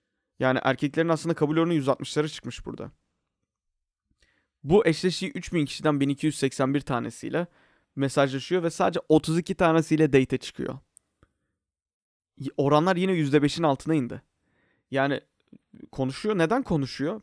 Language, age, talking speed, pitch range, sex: Turkish, 30-49, 105 wpm, 135-170 Hz, male